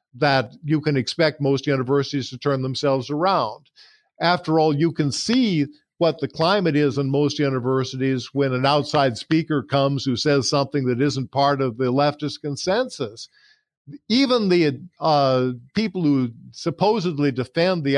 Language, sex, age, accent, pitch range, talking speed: English, male, 50-69, American, 130-165 Hz, 150 wpm